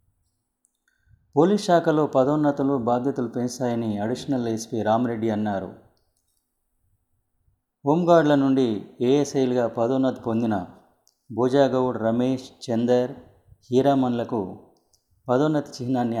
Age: 30-49